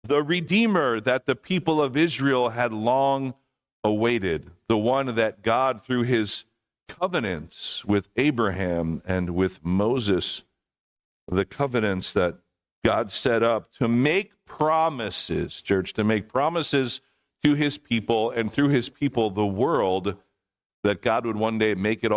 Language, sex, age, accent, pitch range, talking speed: English, male, 50-69, American, 105-150 Hz, 140 wpm